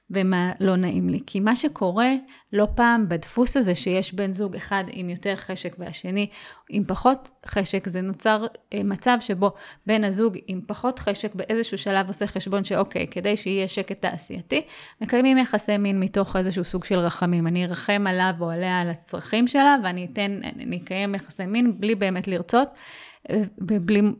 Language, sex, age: English, female, 30-49